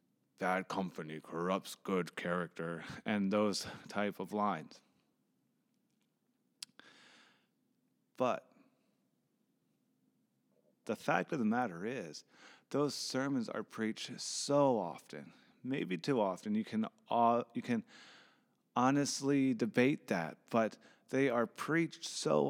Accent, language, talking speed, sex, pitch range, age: American, English, 100 wpm, male, 105-140 Hz, 30-49